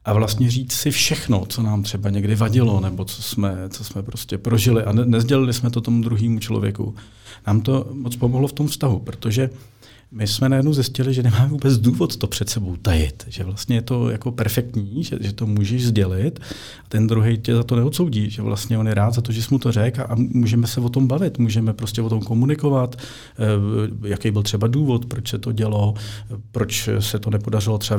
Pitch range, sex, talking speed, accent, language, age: 110-125 Hz, male, 205 wpm, native, Czech, 40-59